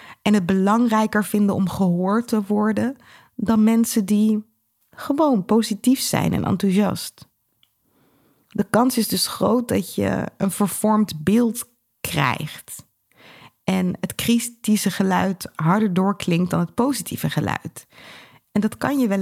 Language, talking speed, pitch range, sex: Dutch, 130 wpm, 180-225 Hz, female